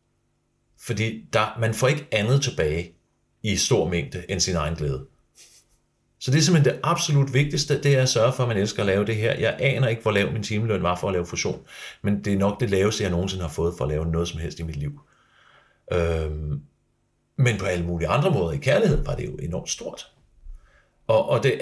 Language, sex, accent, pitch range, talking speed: Danish, male, native, 80-110 Hz, 220 wpm